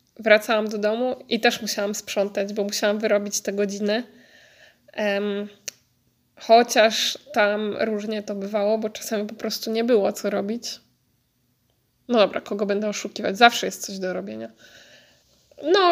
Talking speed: 135 wpm